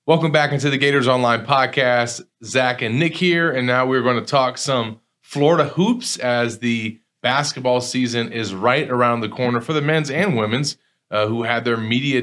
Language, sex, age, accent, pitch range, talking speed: English, male, 30-49, American, 110-135 Hz, 190 wpm